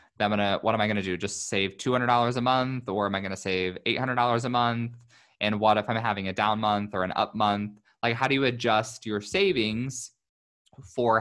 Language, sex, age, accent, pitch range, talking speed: English, male, 20-39, American, 100-120 Hz, 230 wpm